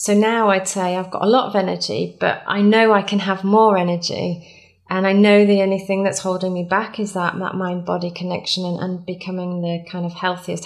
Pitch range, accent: 185-205 Hz, British